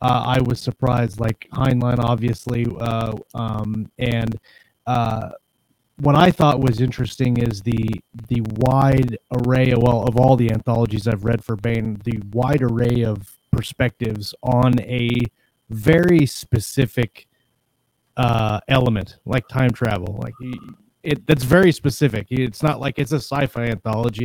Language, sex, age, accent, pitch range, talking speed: English, male, 30-49, American, 115-130 Hz, 140 wpm